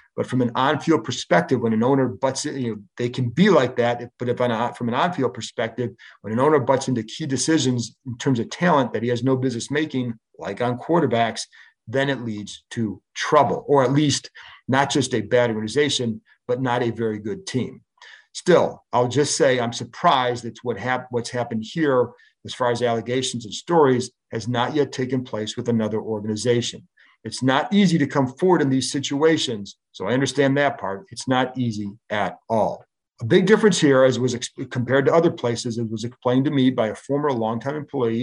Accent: American